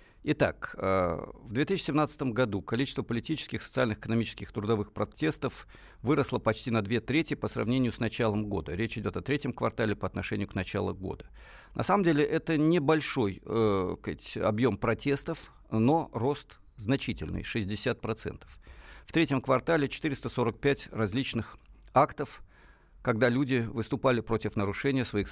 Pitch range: 105-135 Hz